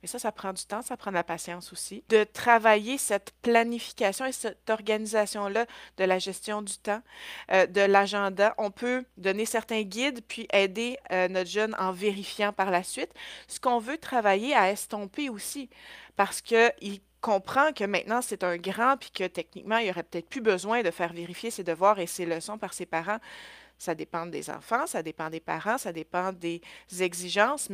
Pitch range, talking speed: 190-235 Hz, 195 wpm